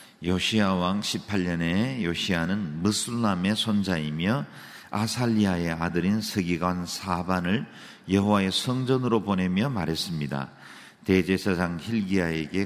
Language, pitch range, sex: Korean, 85-115 Hz, male